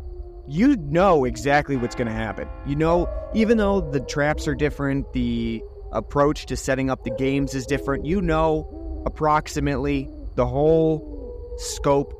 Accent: American